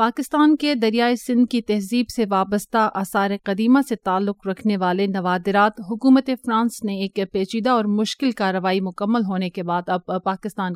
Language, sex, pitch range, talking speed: English, female, 195-235 Hz, 160 wpm